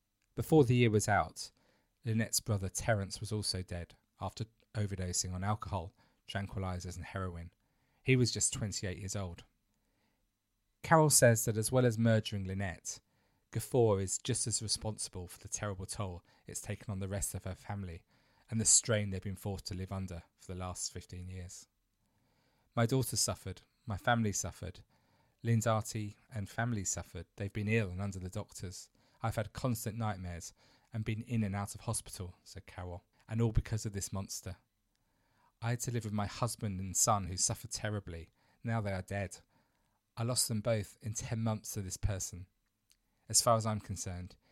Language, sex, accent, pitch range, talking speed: English, male, British, 95-115 Hz, 175 wpm